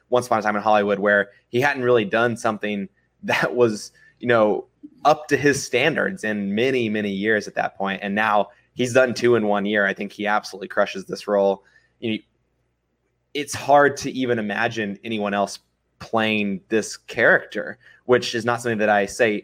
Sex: male